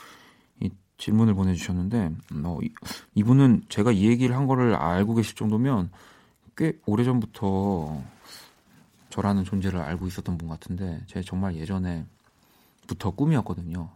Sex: male